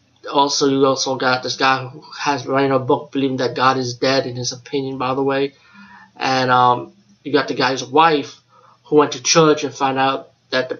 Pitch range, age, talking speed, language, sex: 130-150 Hz, 20-39, 210 wpm, English, male